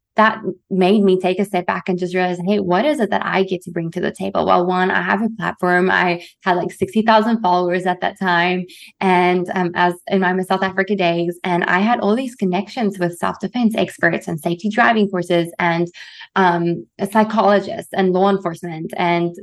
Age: 20-39